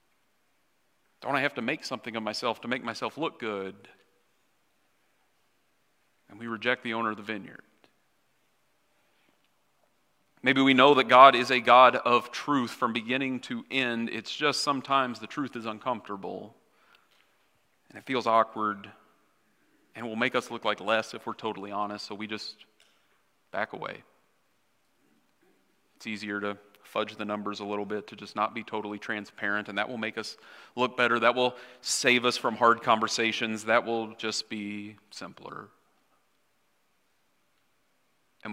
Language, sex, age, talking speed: English, male, 40-59, 150 wpm